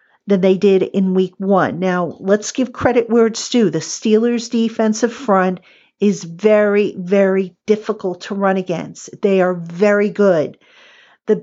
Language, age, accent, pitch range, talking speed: English, 50-69, American, 185-220 Hz, 150 wpm